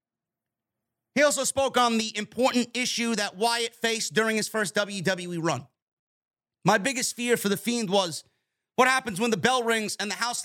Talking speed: 180 wpm